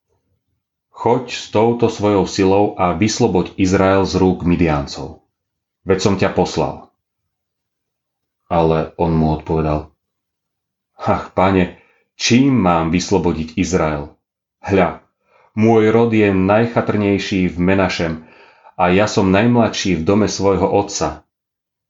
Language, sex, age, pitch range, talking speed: Slovak, male, 30-49, 80-100 Hz, 110 wpm